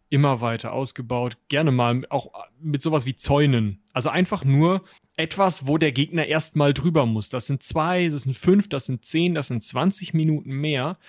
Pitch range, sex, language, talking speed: 130-160 Hz, male, German, 185 wpm